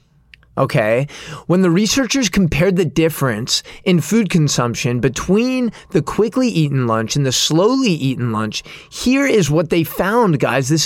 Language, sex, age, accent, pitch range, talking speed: English, male, 20-39, American, 140-195 Hz, 150 wpm